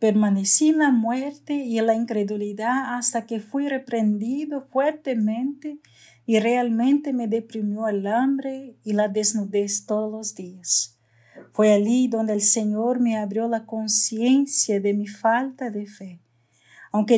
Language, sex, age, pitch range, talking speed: Spanish, female, 50-69, 200-240 Hz, 140 wpm